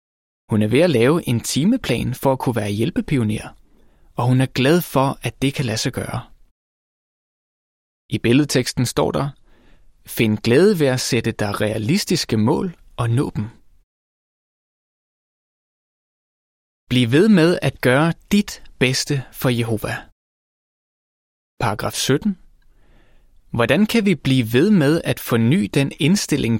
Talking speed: 135 wpm